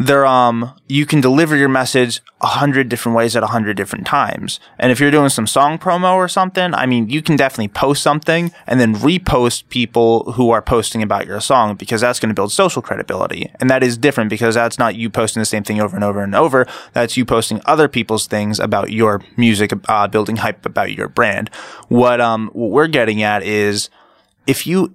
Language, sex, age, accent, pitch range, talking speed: English, male, 20-39, American, 105-135 Hz, 215 wpm